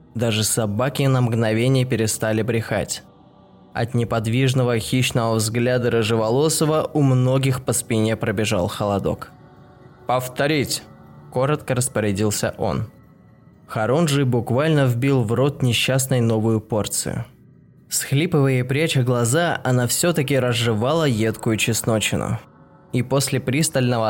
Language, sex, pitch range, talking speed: Russian, male, 110-135 Hz, 105 wpm